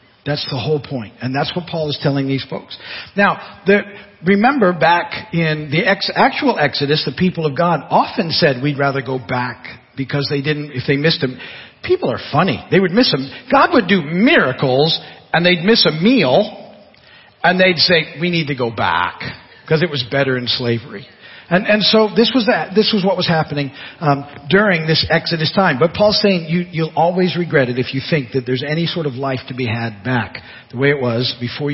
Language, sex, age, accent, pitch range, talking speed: English, male, 50-69, American, 130-180 Hz, 210 wpm